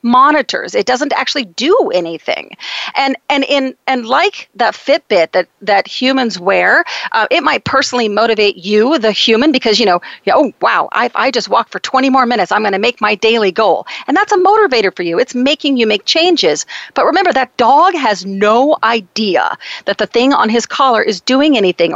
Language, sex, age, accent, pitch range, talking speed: English, female, 40-59, American, 205-275 Hz, 195 wpm